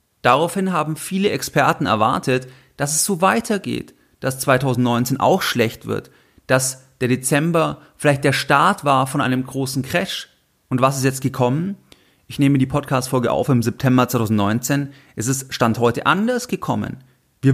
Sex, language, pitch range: male, German, 125-160 Hz